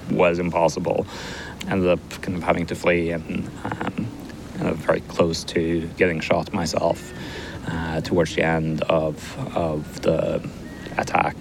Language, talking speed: Czech, 140 wpm